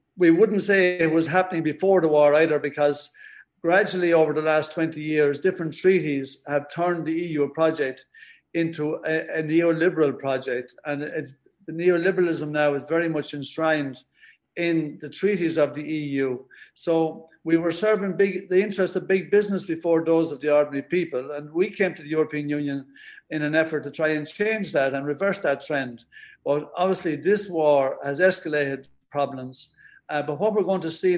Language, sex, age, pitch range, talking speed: English, male, 50-69, 150-185 Hz, 175 wpm